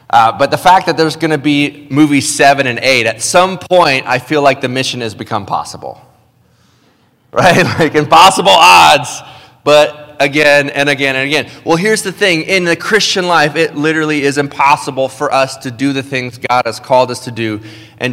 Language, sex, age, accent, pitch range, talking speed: English, male, 30-49, American, 125-145 Hz, 195 wpm